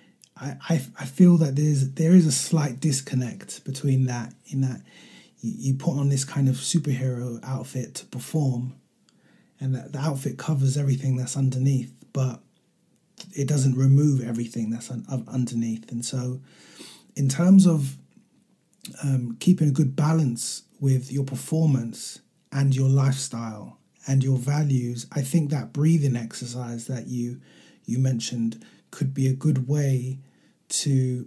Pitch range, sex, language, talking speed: 125-150 Hz, male, English, 145 wpm